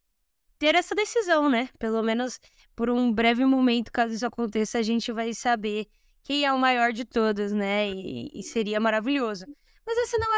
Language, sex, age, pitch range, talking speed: Portuguese, female, 10-29, 230-300 Hz, 185 wpm